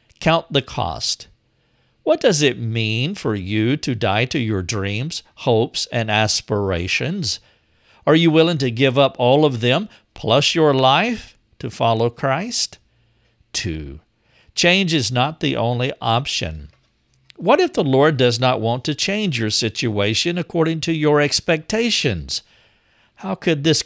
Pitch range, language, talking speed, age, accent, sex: 115-155 Hz, English, 145 wpm, 50-69, American, male